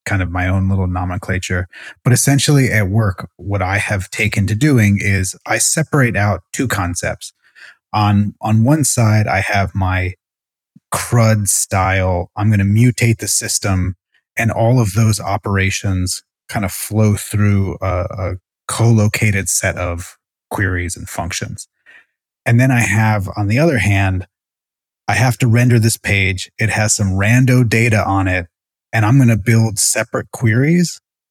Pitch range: 95-115 Hz